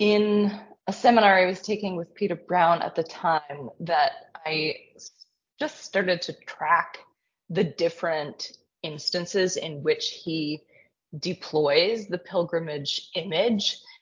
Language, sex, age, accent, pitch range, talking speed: English, female, 20-39, American, 160-245 Hz, 120 wpm